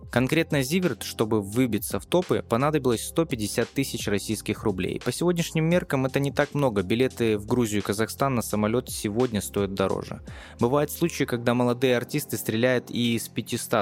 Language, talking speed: Russian, 160 wpm